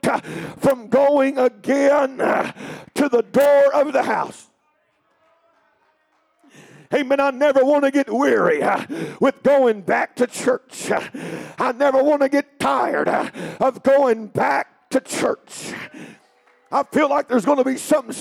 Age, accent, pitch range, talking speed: 50-69, American, 275-325 Hz, 130 wpm